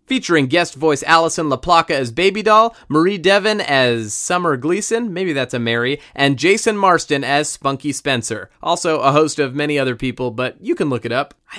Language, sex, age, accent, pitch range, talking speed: English, male, 30-49, American, 125-165 Hz, 190 wpm